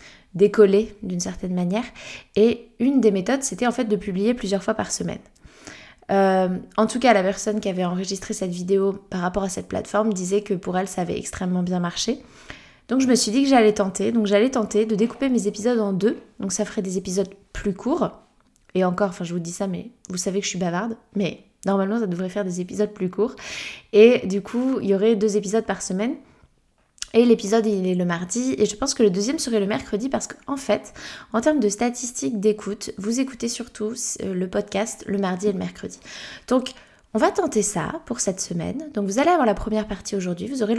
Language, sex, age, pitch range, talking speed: French, female, 20-39, 195-230 Hz, 220 wpm